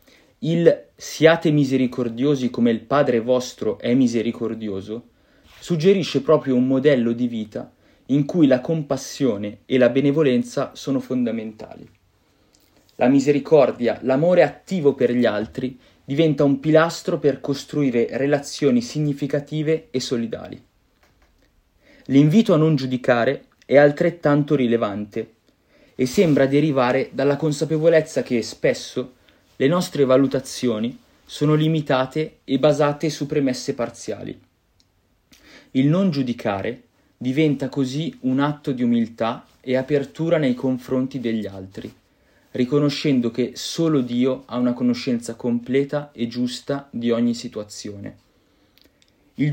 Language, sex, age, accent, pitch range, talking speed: Italian, male, 30-49, native, 120-145 Hz, 115 wpm